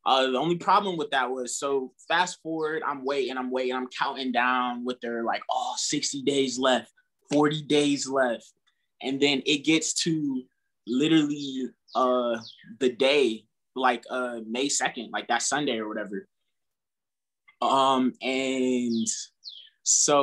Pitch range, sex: 125-150 Hz, male